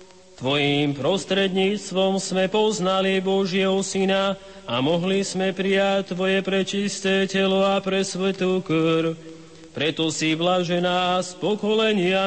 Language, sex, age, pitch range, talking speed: Slovak, male, 30-49, 170-195 Hz, 110 wpm